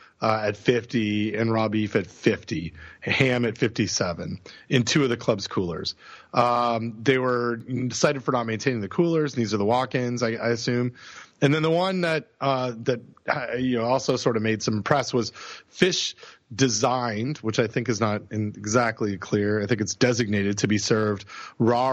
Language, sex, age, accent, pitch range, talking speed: English, male, 30-49, American, 105-125 Hz, 185 wpm